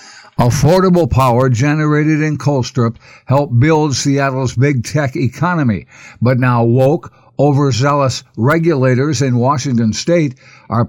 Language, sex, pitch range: English, male, 120-145 Hz